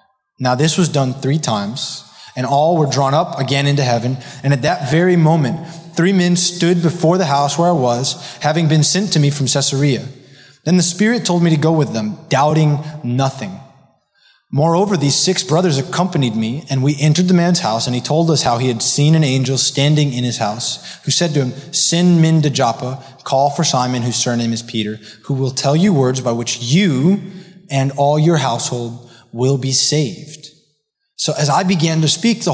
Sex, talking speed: male, 200 wpm